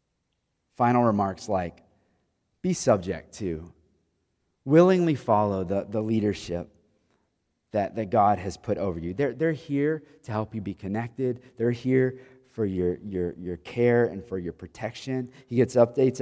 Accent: American